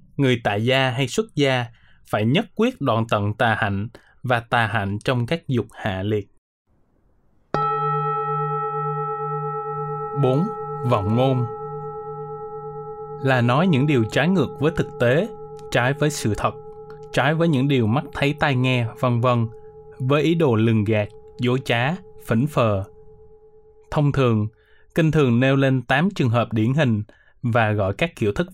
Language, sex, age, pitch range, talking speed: Vietnamese, male, 20-39, 120-155 Hz, 150 wpm